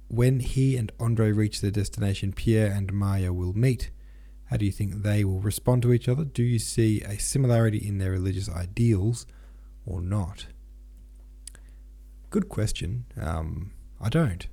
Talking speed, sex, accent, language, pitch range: 155 wpm, male, Australian, English, 85-120 Hz